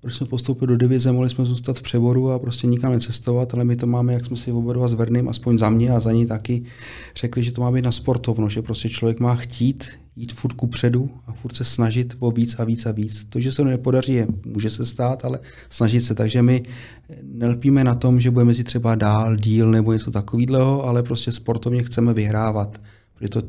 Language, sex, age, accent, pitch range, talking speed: Czech, male, 40-59, native, 110-125 Hz, 225 wpm